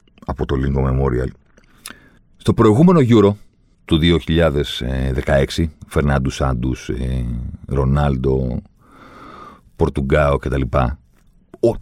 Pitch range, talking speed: 75-110 Hz, 75 wpm